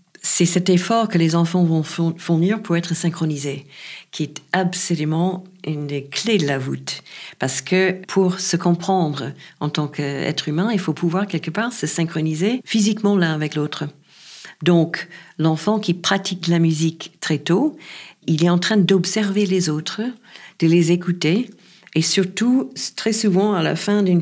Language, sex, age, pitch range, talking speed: French, female, 50-69, 145-190 Hz, 165 wpm